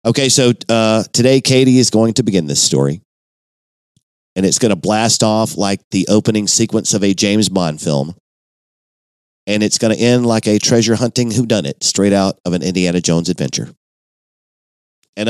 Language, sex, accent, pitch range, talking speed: English, male, American, 90-120 Hz, 175 wpm